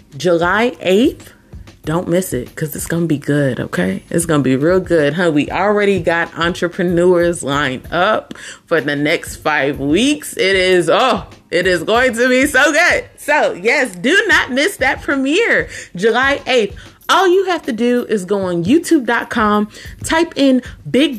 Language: English